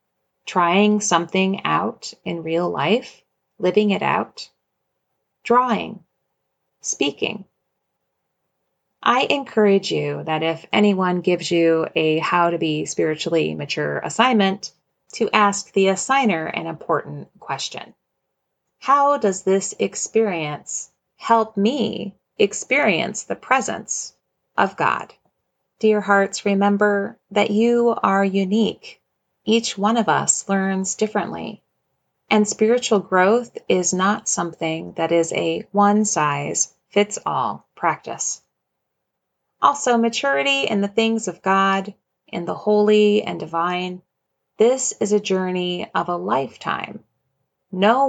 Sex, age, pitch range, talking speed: female, 30-49, 165-210 Hz, 110 wpm